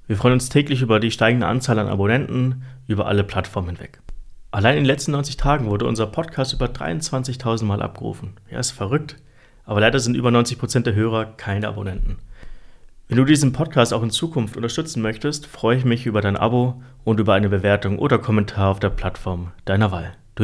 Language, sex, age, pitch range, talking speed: German, male, 30-49, 100-125 Hz, 195 wpm